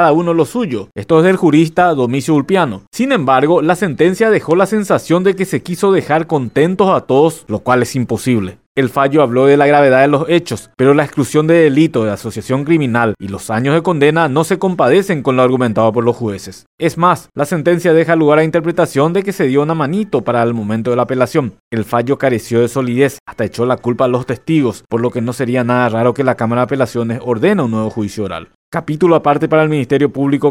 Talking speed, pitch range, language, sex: 225 wpm, 125-160 Hz, Spanish, male